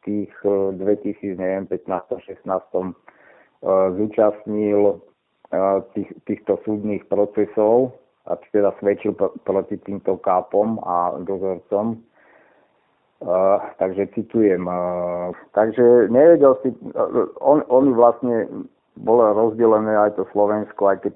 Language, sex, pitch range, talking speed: Slovak, male, 95-110 Hz, 90 wpm